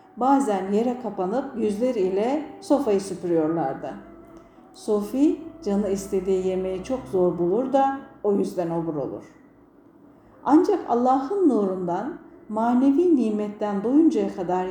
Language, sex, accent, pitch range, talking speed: Turkish, female, native, 185-280 Hz, 100 wpm